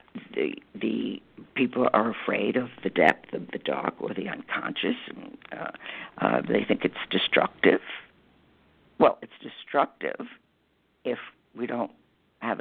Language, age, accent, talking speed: English, 60-79, American, 130 wpm